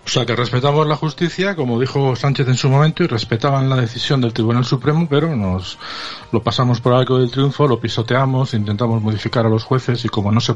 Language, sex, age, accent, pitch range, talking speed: Spanish, male, 40-59, Spanish, 105-120 Hz, 215 wpm